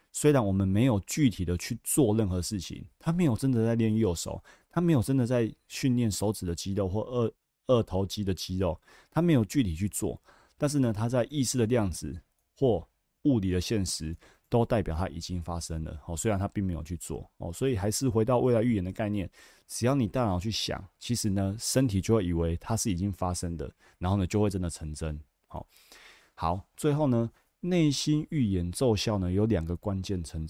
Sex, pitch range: male, 90-120 Hz